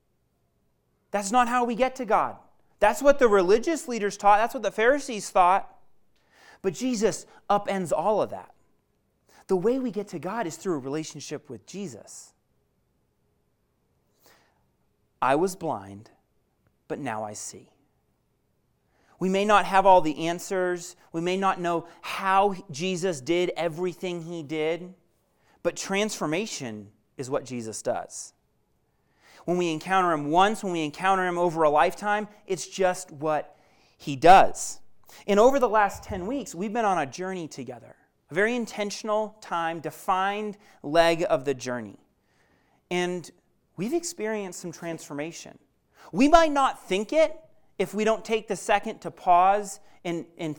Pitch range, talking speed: 155-210 Hz, 145 wpm